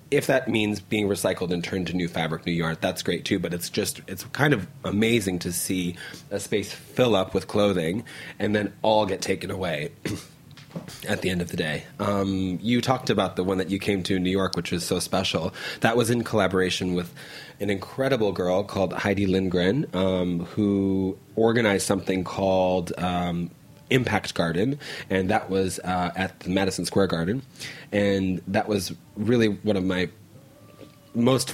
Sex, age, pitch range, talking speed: male, 30-49, 90-110 Hz, 180 wpm